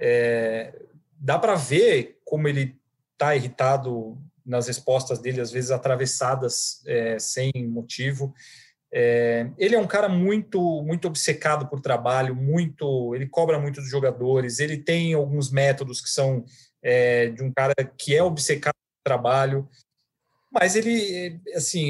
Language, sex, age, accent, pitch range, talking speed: Portuguese, male, 40-59, Brazilian, 130-160 Hz, 140 wpm